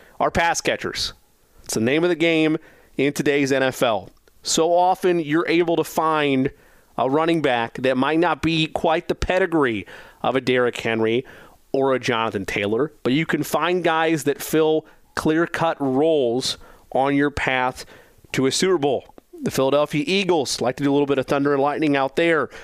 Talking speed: 180 wpm